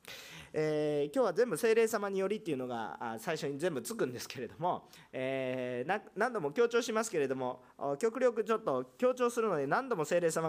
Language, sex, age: Japanese, male, 40-59